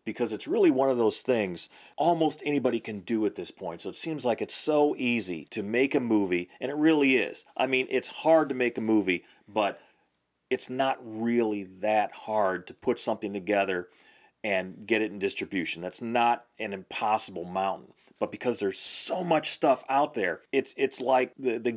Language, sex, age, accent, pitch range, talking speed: English, male, 40-59, American, 115-185 Hz, 195 wpm